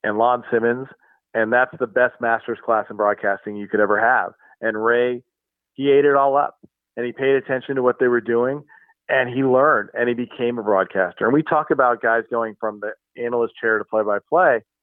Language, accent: English, American